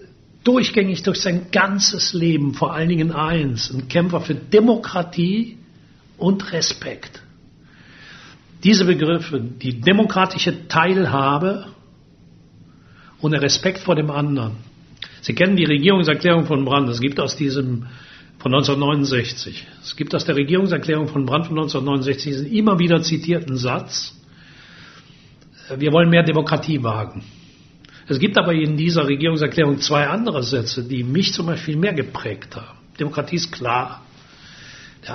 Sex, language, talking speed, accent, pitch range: male, German, 135 wpm, German, 140-175 Hz